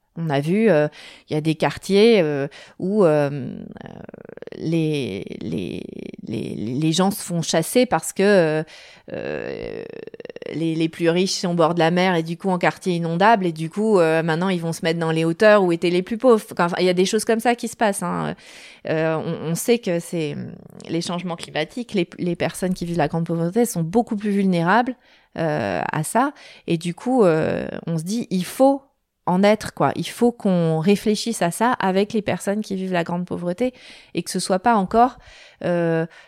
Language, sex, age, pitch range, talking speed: French, female, 30-49, 165-215 Hz, 205 wpm